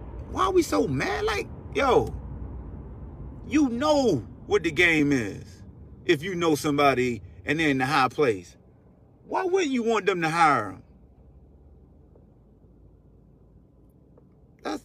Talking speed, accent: 130 wpm, American